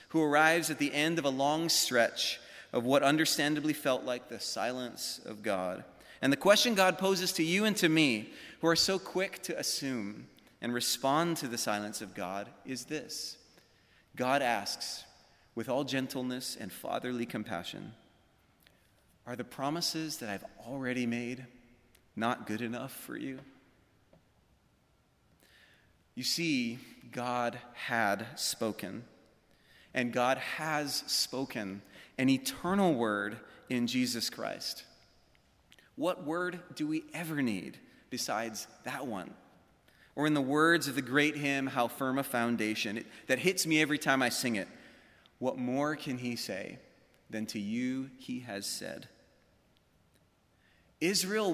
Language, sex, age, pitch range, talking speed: English, male, 30-49, 120-155 Hz, 140 wpm